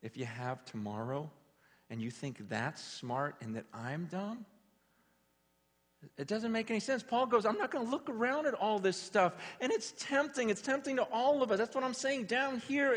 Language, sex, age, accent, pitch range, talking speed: English, male, 40-59, American, 135-215 Hz, 210 wpm